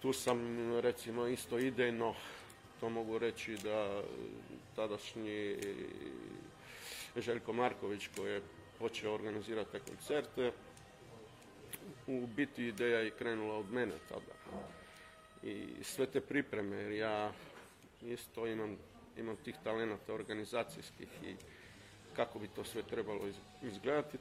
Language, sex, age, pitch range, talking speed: Croatian, male, 50-69, 105-125 Hz, 110 wpm